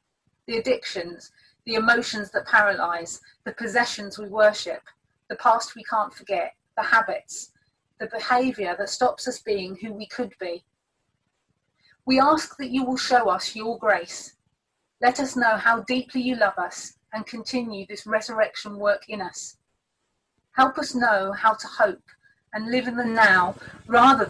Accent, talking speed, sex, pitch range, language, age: British, 155 wpm, female, 200-250 Hz, English, 30-49